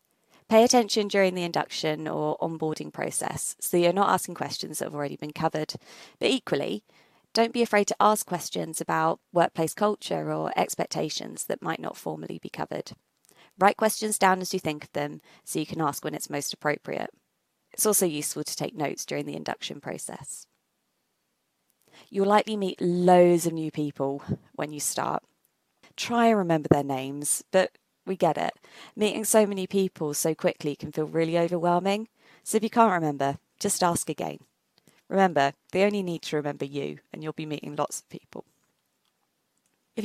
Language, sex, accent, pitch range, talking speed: English, female, British, 150-200 Hz, 170 wpm